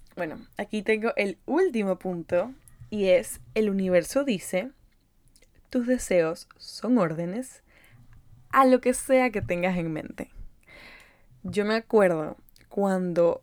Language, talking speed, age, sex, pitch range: Spanish, 120 wpm, 10-29, female, 175-235 Hz